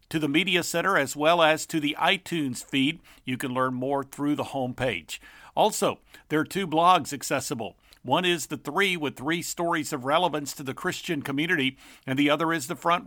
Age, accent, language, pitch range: 50-69, American, English, 140-170 Hz